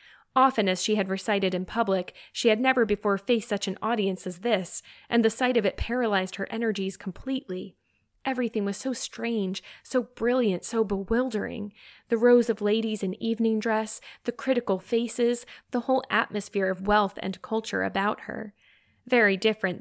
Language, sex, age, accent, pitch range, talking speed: English, female, 10-29, American, 195-235 Hz, 165 wpm